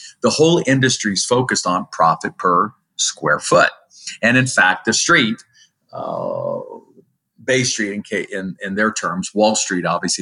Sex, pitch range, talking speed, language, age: male, 100-130 Hz, 145 wpm, English, 50-69